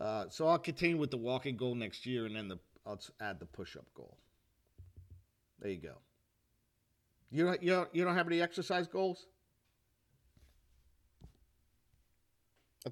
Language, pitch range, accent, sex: English, 110-160 Hz, American, male